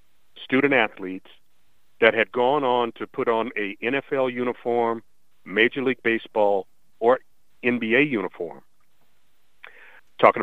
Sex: male